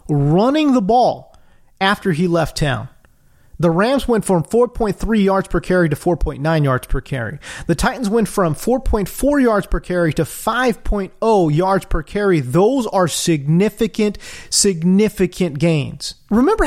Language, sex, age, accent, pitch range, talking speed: English, male, 30-49, American, 165-240 Hz, 140 wpm